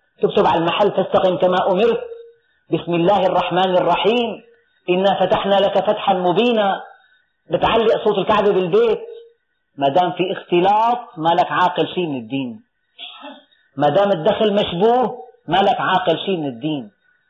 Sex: female